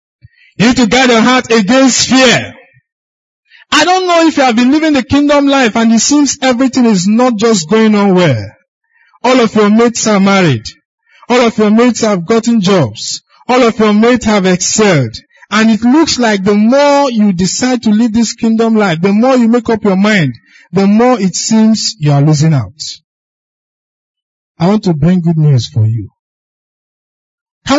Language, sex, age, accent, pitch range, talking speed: English, male, 50-69, Nigerian, 185-265 Hz, 185 wpm